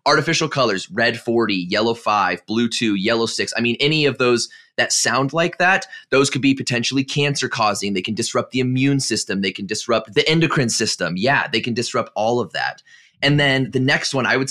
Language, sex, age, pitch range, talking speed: English, male, 20-39, 110-150 Hz, 210 wpm